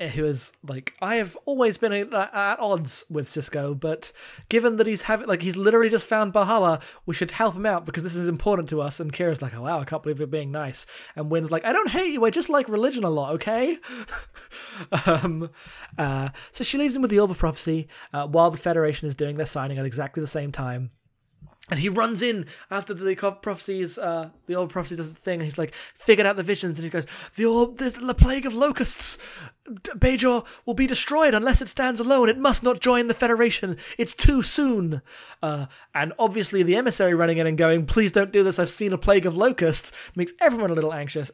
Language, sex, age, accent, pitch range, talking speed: English, male, 20-39, British, 150-205 Hz, 225 wpm